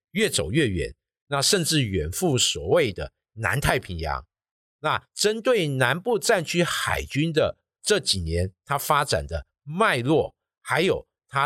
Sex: male